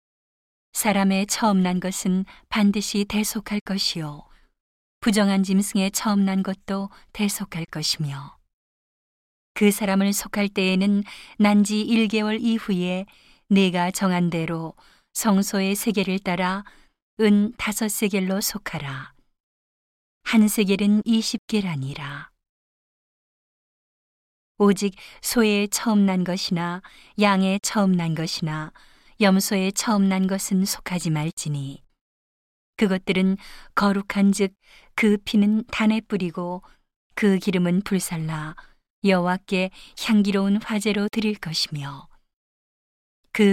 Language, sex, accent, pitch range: Korean, female, native, 180-210 Hz